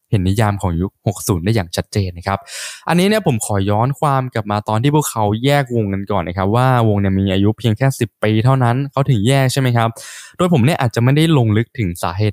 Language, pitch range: Thai, 100-125 Hz